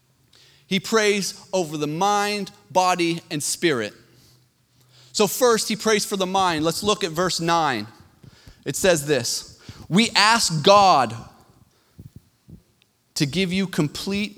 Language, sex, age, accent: English, male, 30-49, American